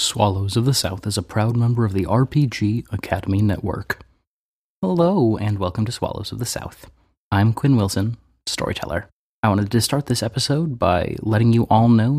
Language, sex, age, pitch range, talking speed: English, male, 30-49, 100-125 Hz, 175 wpm